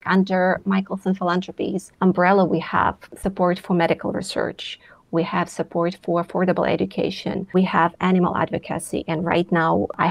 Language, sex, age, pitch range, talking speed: English, female, 30-49, 180-210 Hz, 140 wpm